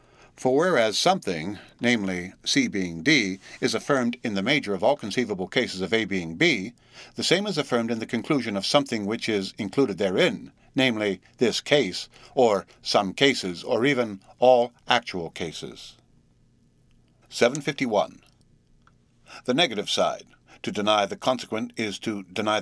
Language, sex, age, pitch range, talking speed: English, male, 60-79, 100-135 Hz, 145 wpm